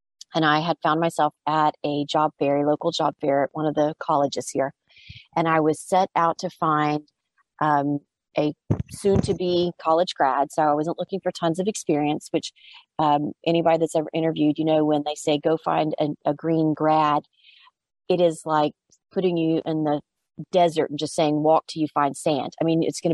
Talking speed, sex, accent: 195 wpm, female, American